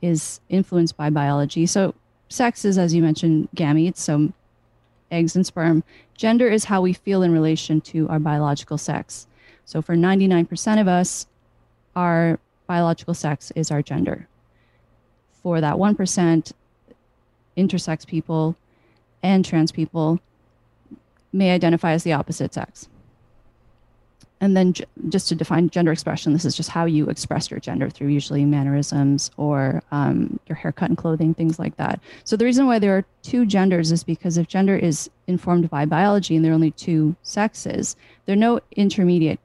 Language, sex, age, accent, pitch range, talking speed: English, female, 30-49, American, 145-185 Hz, 160 wpm